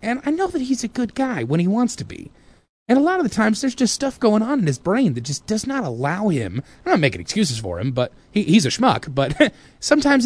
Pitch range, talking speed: 110-170 Hz, 270 wpm